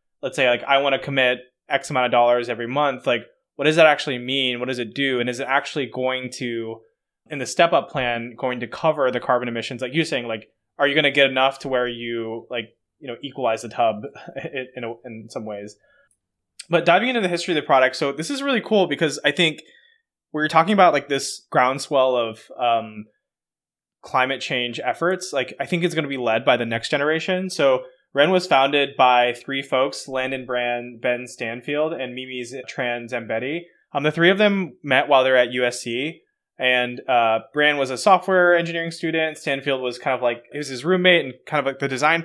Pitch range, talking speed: 125-155 Hz, 215 wpm